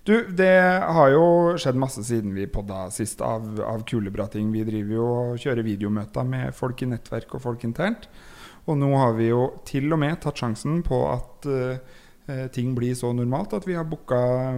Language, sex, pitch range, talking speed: English, male, 110-130 Hz, 190 wpm